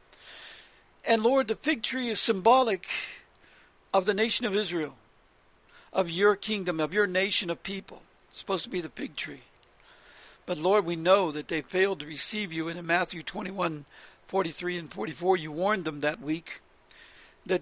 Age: 60-79